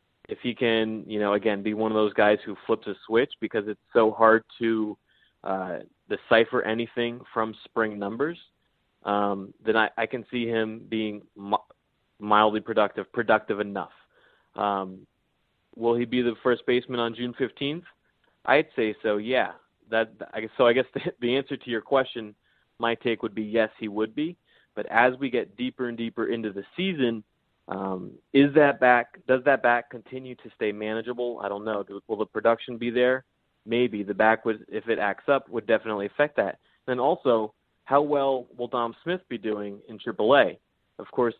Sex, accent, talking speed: male, American, 180 wpm